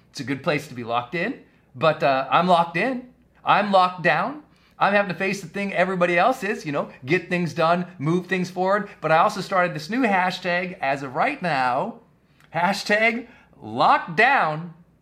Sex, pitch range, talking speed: male, 135-190 Hz, 190 wpm